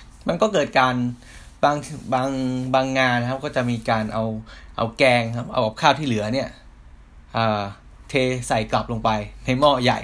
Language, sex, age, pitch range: Thai, male, 10-29, 105-125 Hz